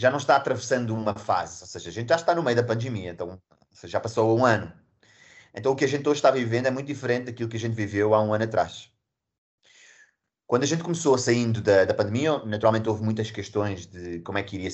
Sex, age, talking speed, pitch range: male, 20-39, 230 wpm, 100-125 Hz